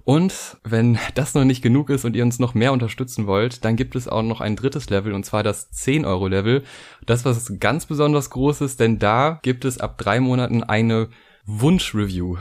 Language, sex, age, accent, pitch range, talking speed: German, male, 20-39, German, 100-120 Hz, 205 wpm